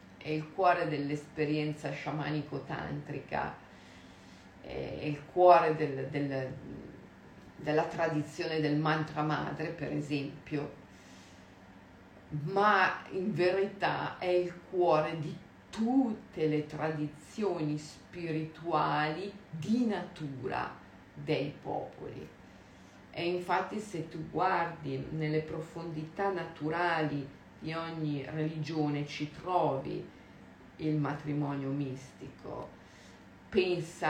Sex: female